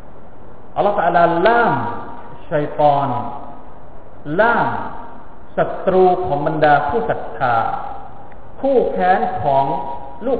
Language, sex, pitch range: Thai, male, 125-185 Hz